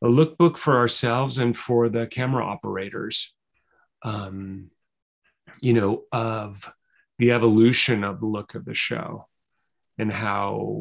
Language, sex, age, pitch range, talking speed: English, male, 30-49, 105-120 Hz, 130 wpm